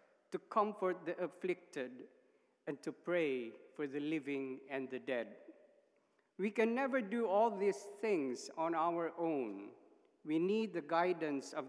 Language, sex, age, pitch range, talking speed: English, male, 50-69, 145-205 Hz, 145 wpm